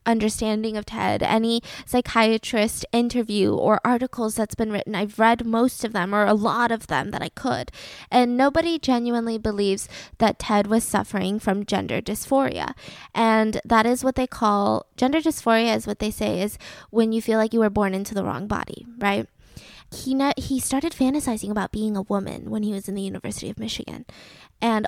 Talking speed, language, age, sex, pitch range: 190 wpm, English, 10-29, female, 215-245 Hz